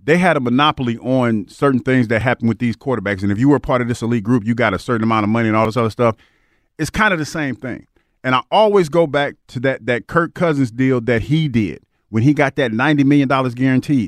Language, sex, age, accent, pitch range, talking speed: English, male, 40-59, American, 130-185 Hz, 255 wpm